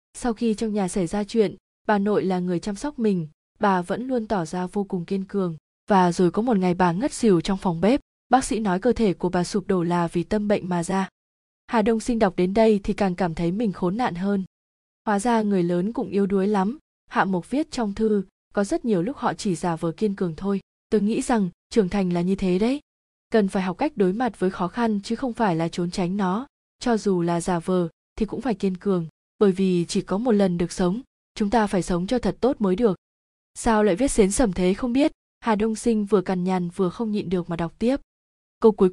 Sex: female